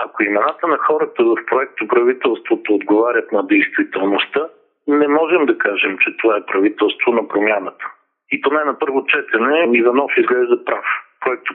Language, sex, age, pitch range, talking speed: Bulgarian, male, 50-69, 295-400 Hz, 155 wpm